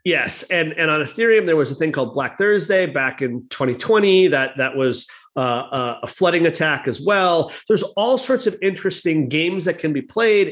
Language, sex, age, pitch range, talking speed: English, male, 40-59, 145-195 Hz, 200 wpm